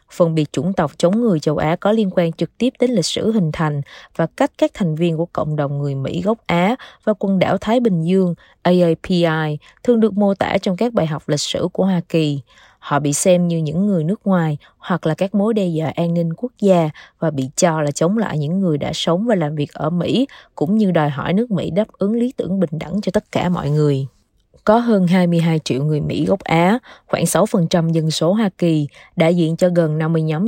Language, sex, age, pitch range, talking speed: Vietnamese, female, 20-39, 150-195 Hz, 235 wpm